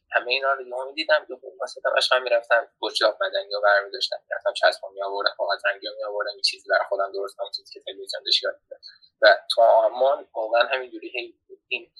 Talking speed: 175 wpm